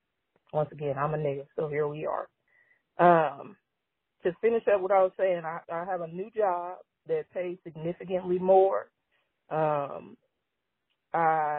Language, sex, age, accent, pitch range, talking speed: English, female, 30-49, American, 155-190 Hz, 150 wpm